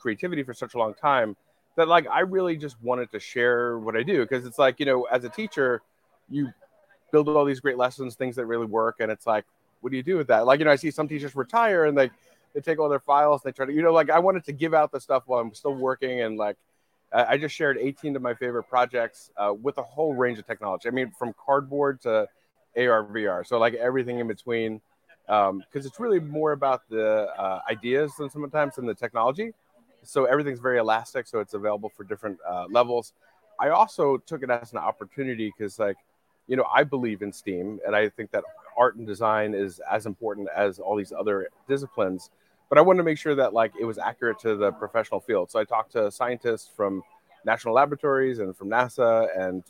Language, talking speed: English, 225 wpm